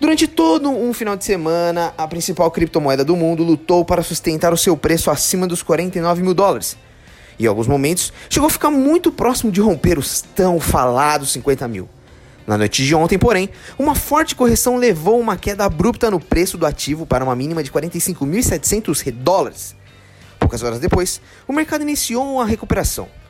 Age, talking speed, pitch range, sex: 20-39, 175 wpm, 155-220 Hz, male